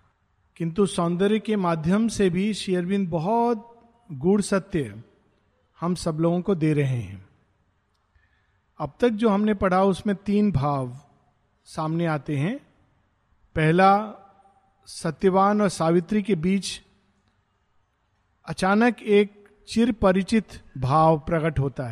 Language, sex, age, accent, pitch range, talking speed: Hindi, male, 50-69, native, 160-225 Hz, 110 wpm